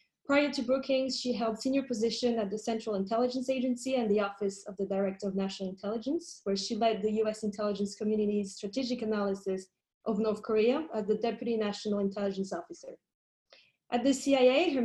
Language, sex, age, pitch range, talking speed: English, female, 20-39, 205-250 Hz, 175 wpm